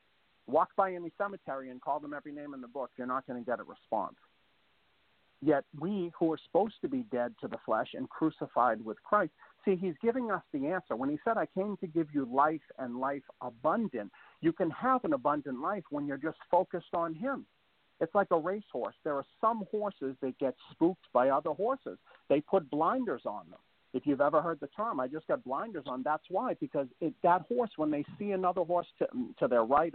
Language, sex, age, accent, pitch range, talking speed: English, male, 50-69, American, 135-195 Hz, 215 wpm